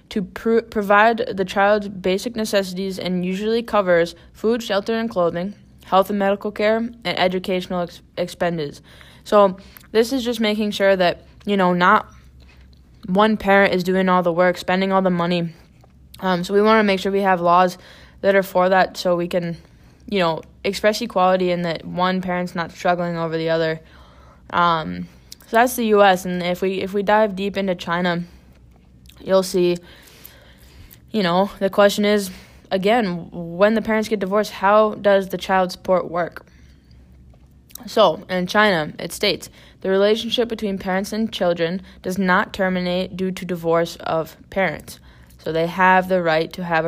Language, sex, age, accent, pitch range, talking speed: English, female, 10-29, American, 170-200 Hz, 170 wpm